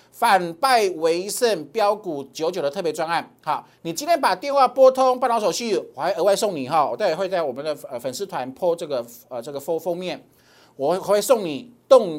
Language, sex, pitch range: Chinese, male, 180-270 Hz